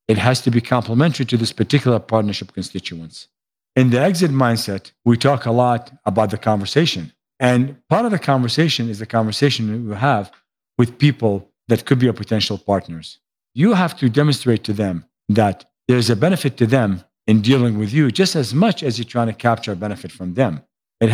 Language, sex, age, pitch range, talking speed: English, male, 50-69, 105-135 Hz, 195 wpm